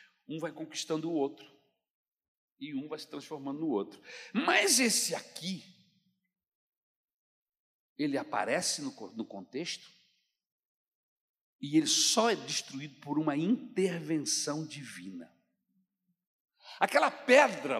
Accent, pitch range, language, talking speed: Brazilian, 160-235 Hz, Portuguese, 105 wpm